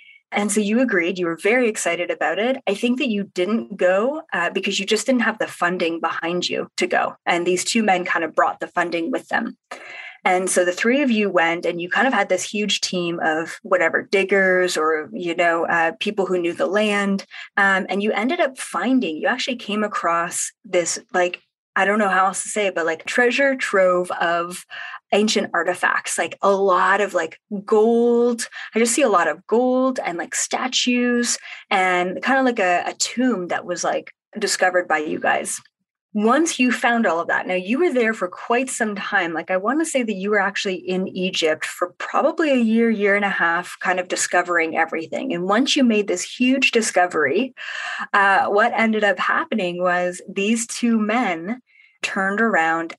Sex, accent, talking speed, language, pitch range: female, American, 200 wpm, English, 180-240 Hz